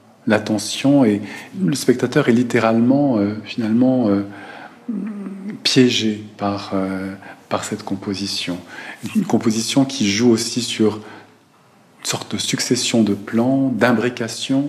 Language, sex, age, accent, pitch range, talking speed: French, male, 40-59, French, 100-120 Hz, 115 wpm